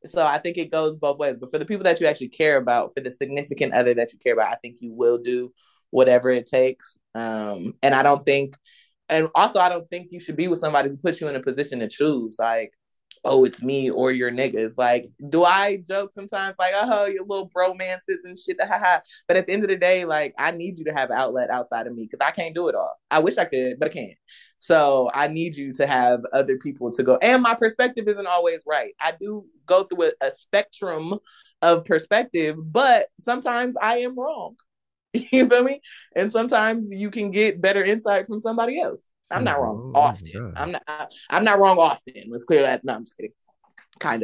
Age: 20-39